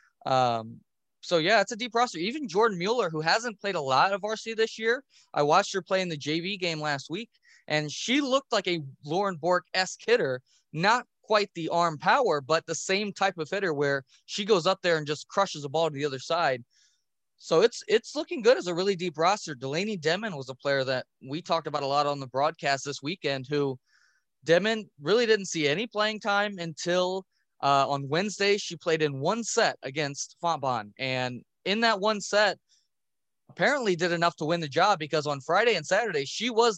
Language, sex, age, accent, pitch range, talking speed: English, male, 20-39, American, 145-200 Hz, 205 wpm